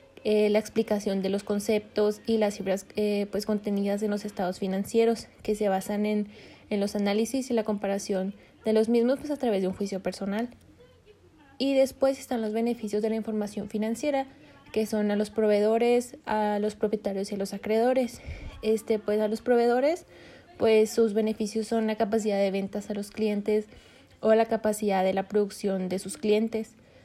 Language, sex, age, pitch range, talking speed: Spanish, female, 20-39, 205-225 Hz, 180 wpm